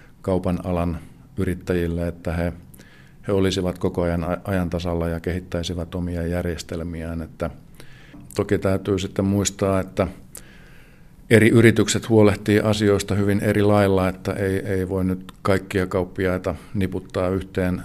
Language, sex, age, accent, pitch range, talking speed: Finnish, male, 50-69, native, 90-100 Hz, 120 wpm